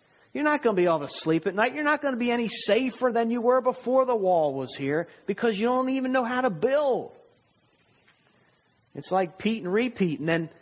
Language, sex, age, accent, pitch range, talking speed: English, male, 40-59, American, 135-200 Hz, 225 wpm